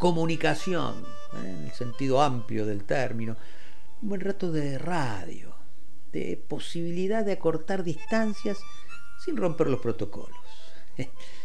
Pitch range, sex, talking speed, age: 110-175 Hz, male, 110 wpm, 50-69